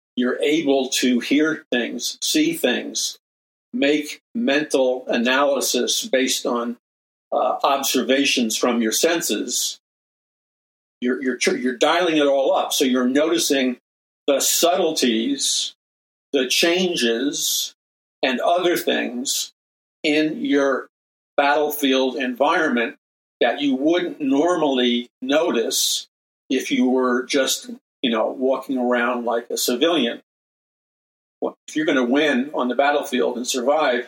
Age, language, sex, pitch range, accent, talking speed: 50-69, English, male, 120-165 Hz, American, 115 wpm